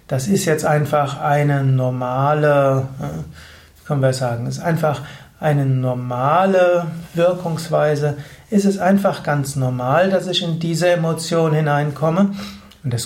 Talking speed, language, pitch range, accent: 125 wpm, German, 140-175 Hz, German